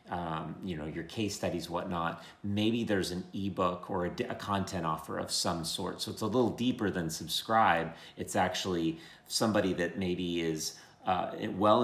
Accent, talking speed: American, 170 wpm